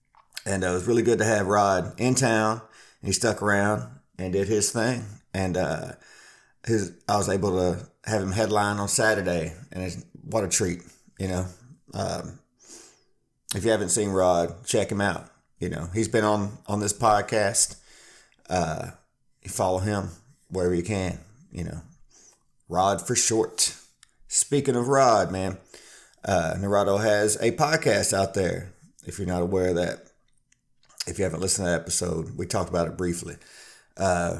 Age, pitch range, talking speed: 30-49, 90-110 Hz, 170 wpm